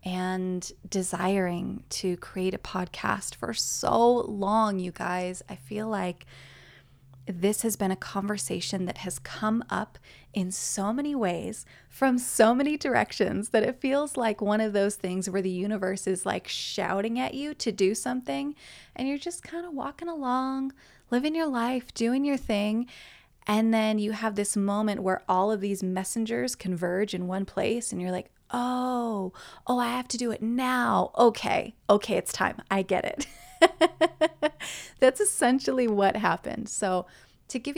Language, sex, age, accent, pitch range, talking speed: English, female, 20-39, American, 190-245 Hz, 165 wpm